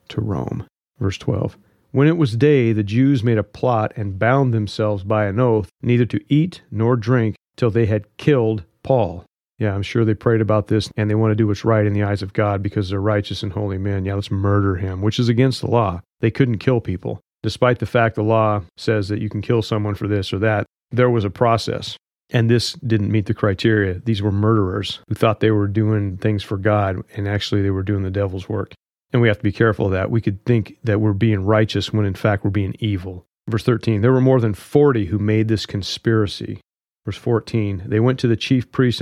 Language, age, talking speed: English, 40-59, 230 wpm